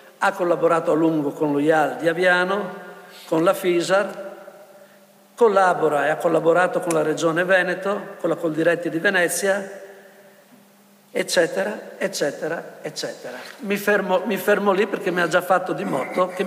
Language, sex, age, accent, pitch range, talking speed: Italian, male, 50-69, native, 155-190 Hz, 145 wpm